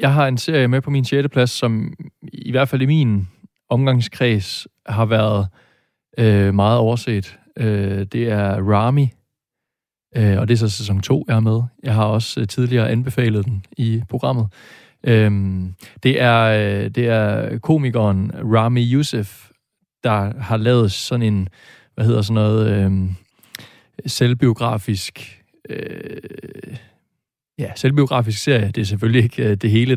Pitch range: 105-125 Hz